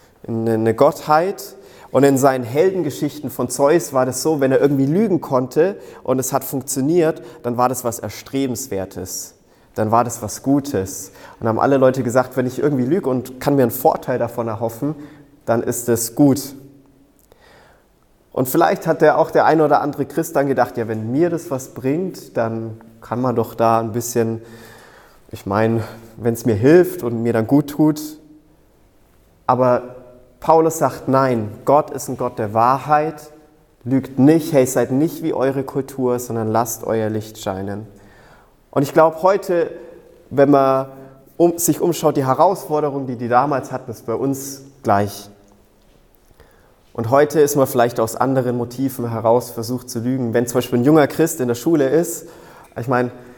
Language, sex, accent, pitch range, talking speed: German, male, German, 115-145 Hz, 170 wpm